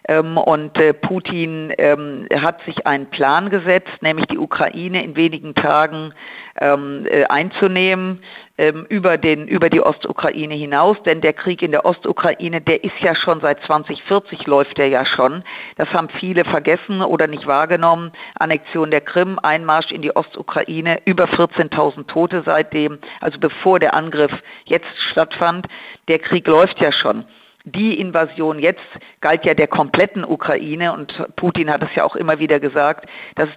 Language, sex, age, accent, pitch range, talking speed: German, female, 50-69, German, 155-180 Hz, 145 wpm